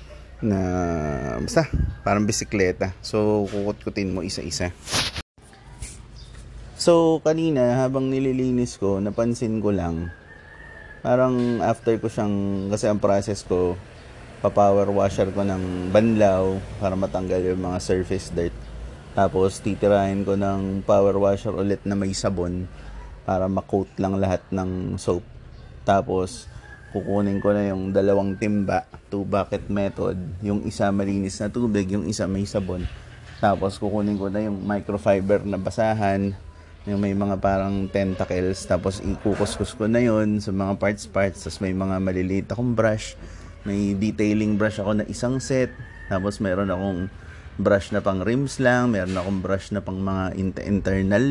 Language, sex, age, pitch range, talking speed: Filipino, male, 20-39, 95-105 Hz, 140 wpm